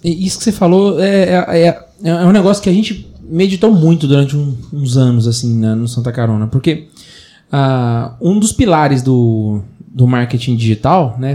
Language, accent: Portuguese, Brazilian